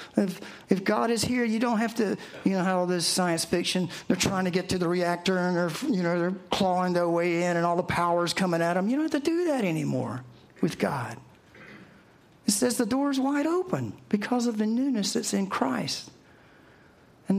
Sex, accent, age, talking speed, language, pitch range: male, American, 50-69, 210 wpm, English, 140-210 Hz